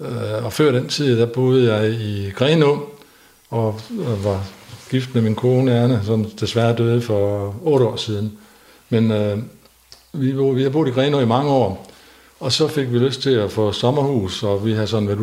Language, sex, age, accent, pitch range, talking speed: Danish, male, 60-79, native, 110-130 Hz, 190 wpm